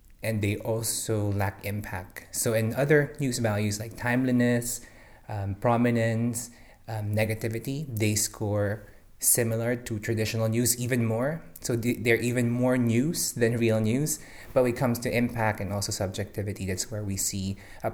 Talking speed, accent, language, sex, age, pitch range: 155 wpm, Filipino, English, male, 20-39, 100-115 Hz